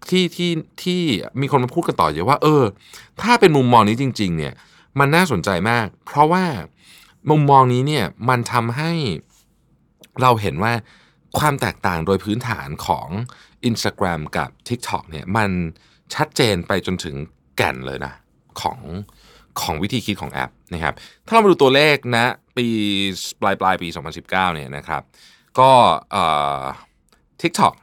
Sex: male